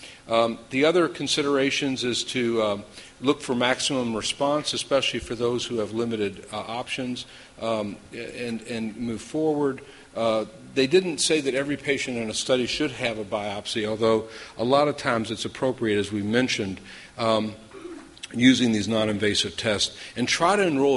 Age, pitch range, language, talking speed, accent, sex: 50-69, 105-130 Hz, English, 165 wpm, American, male